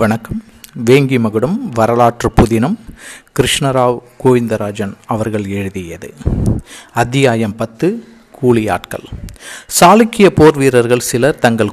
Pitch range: 110-160 Hz